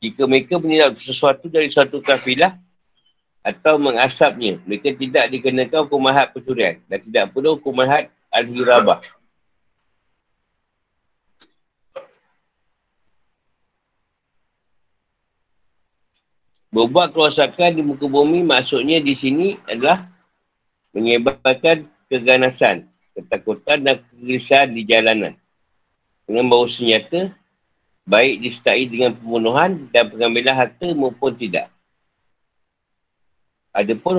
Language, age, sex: Malay, 50-69, male